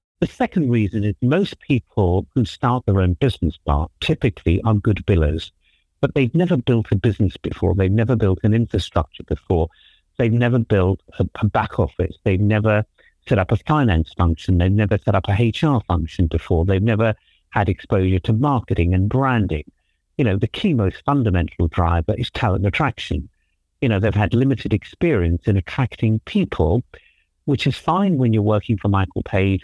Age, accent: 50-69, British